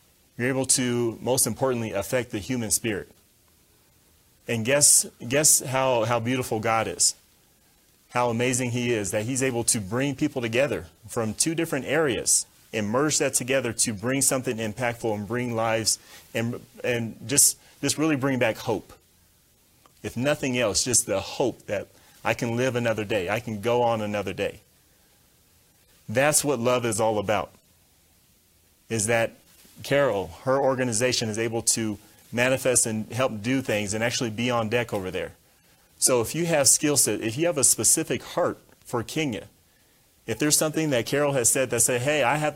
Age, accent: 30-49, American